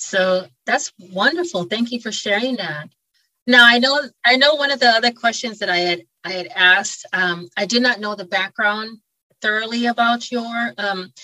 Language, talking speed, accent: English, 185 wpm, American